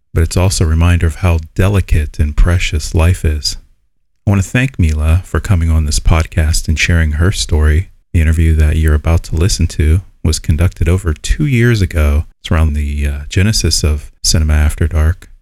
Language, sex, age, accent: English, male, 30-49, American